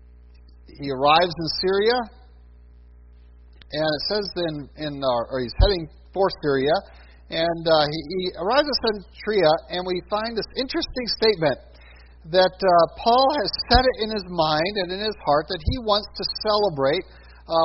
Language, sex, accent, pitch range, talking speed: English, male, American, 140-205 Hz, 160 wpm